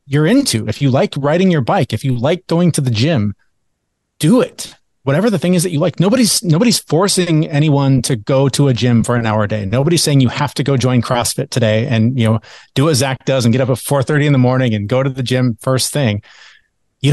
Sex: male